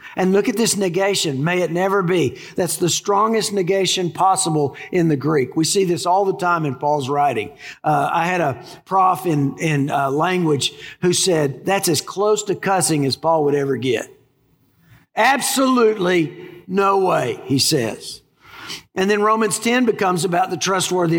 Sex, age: male, 50-69